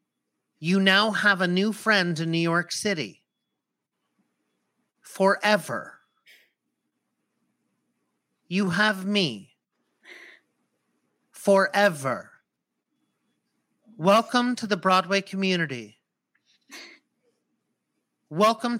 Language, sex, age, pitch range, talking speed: English, male, 40-59, 175-210 Hz, 65 wpm